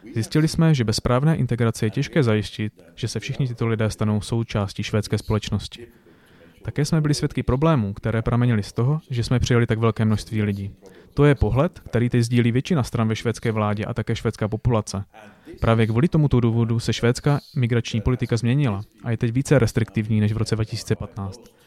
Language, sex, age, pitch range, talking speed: Czech, male, 30-49, 110-135 Hz, 185 wpm